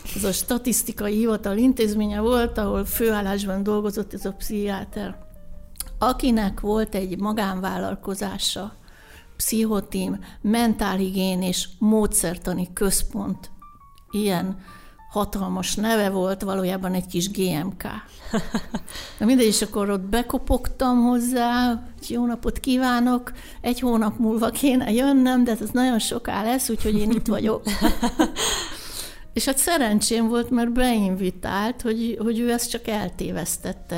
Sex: female